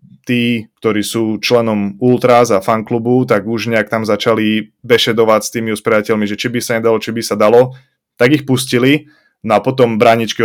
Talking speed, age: 185 wpm, 20-39